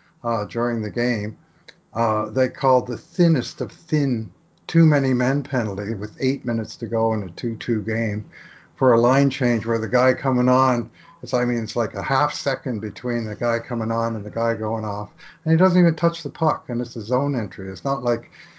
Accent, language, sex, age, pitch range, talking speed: American, English, male, 60-79, 115-160 Hz, 205 wpm